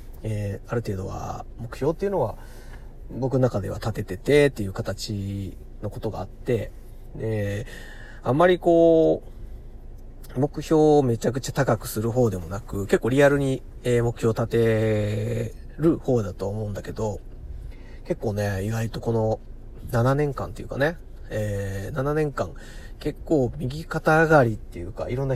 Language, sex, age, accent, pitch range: Japanese, male, 40-59, native, 105-130 Hz